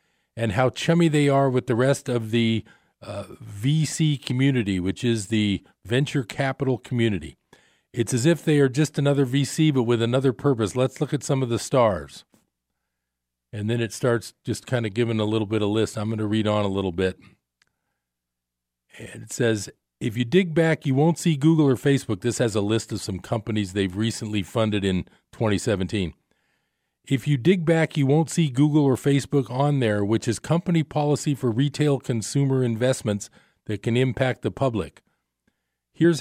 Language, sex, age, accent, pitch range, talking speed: English, male, 40-59, American, 110-145 Hz, 180 wpm